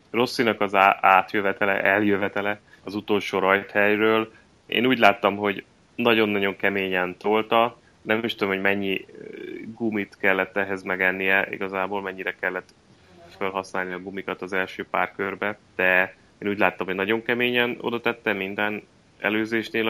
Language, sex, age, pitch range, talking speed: Hungarian, male, 20-39, 90-105 Hz, 130 wpm